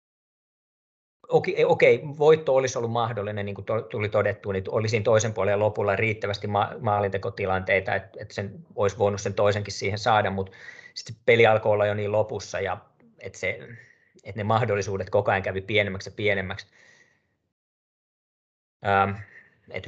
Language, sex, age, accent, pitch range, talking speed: Finnish, male, 20-39, native, 100-120 Hz, 135 wpm